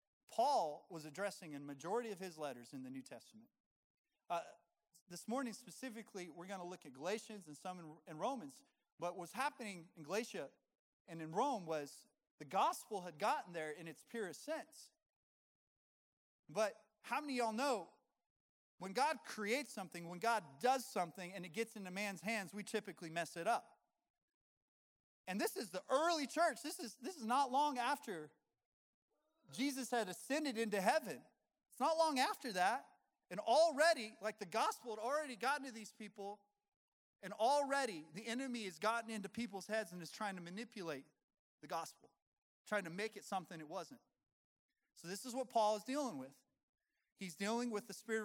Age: 30-49